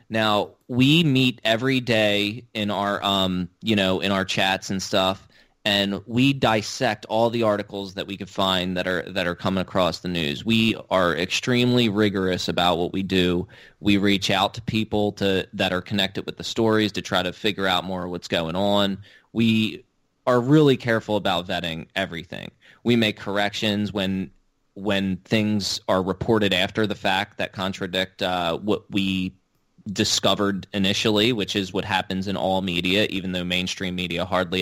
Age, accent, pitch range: 20-39, American, 90-105 Hz